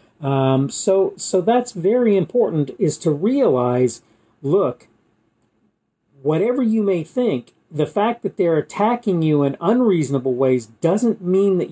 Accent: American